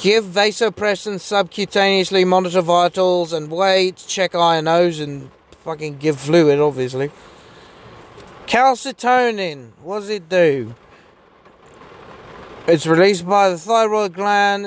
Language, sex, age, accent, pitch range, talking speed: English, male, 30-49, British, 150-195 Hz, 100 wpm